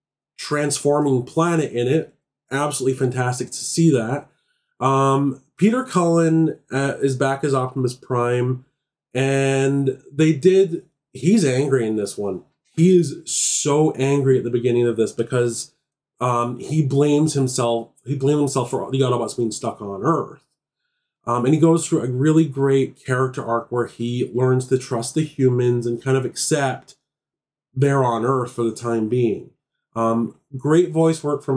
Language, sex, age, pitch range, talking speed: English, male, 30-49, 125-160 Hz, 160 wpm